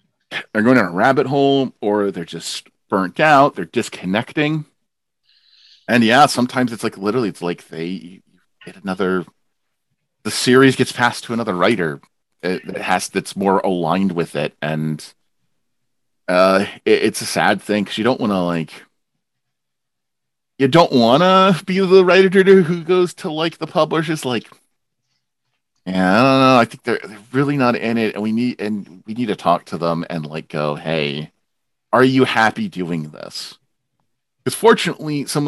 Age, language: 40-59, English